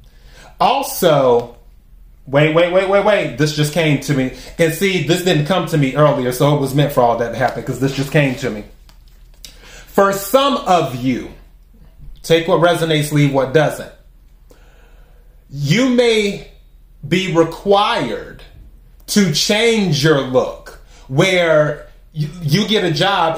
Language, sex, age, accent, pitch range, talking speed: English, male, 30-49, American, 140-170 Hz, 150 wpm